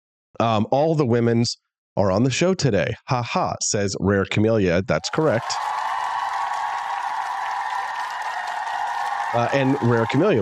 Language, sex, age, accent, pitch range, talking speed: English, male, 30-49, American, 100-140 Hz, 115 wpm